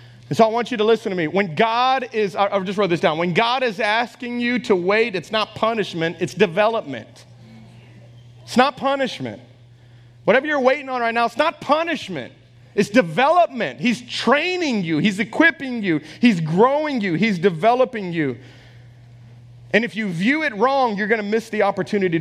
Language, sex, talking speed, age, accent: English, male, 180 wpm, 30-49, American